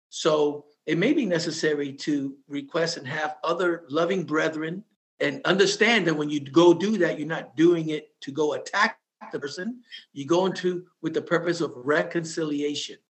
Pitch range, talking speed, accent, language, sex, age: 155-210 Hz, 170 wpm, American, English, male, 50-69